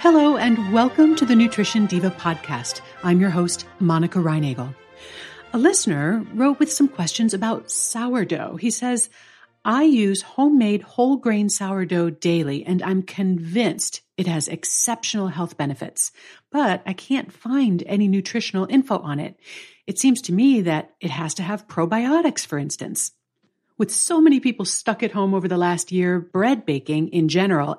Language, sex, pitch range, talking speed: English, female, 170-235 Hz, 160 wpm